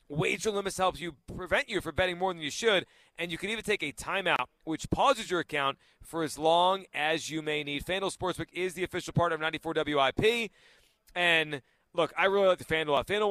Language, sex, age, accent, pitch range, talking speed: English, male, 30-49, American, 140-180 Hz, 210 wpm